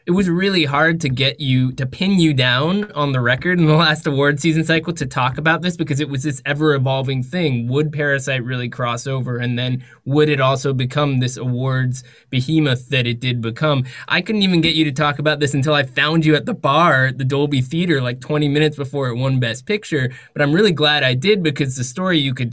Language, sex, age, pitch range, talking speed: English, male, 20-39, 125-150 Hz, 230 wpm